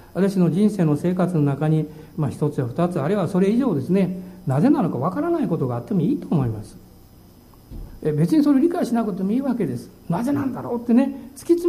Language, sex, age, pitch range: Japanese, male, 60-79, 160-265 Hz